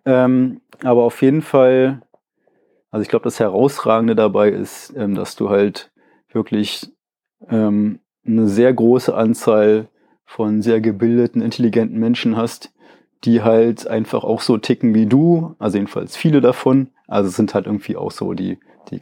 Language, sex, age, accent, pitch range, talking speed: German, male, 30-49, German, 105-120 Hz, 155 wpm